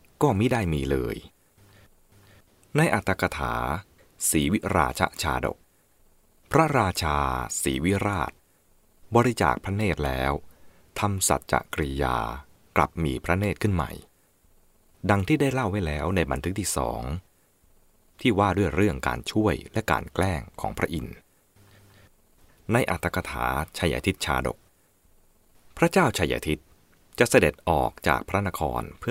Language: English